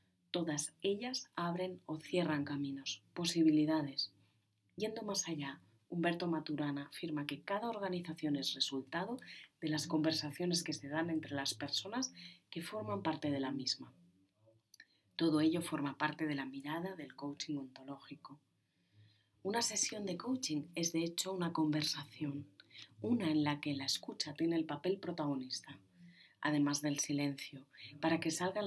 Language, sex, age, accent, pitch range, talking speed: Spanish, female, 30-49, Spanish, 140-165 Hz, 140 wpm